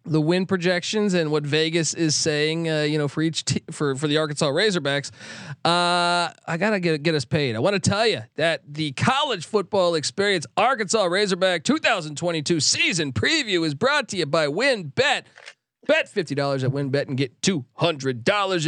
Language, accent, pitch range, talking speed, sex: English, American, 150-200 Hz, 190 wpm, male